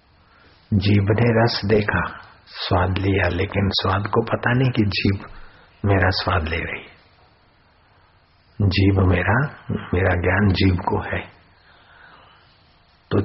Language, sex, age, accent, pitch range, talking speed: Hindi, male, 50-69, native, 95-125 Hz, 115 wpm